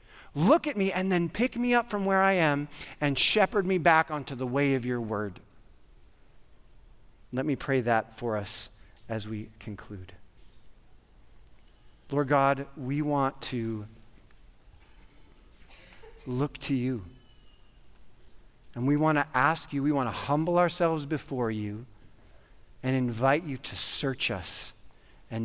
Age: 40-59